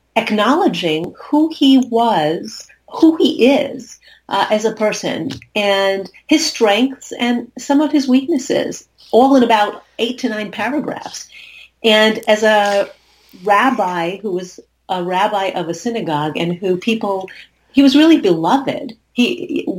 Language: English